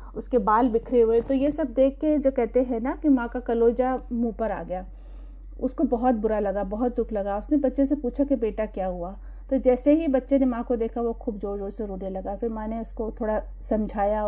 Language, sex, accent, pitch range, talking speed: Hindi, female, native, 220-270 Hz, 240 wpm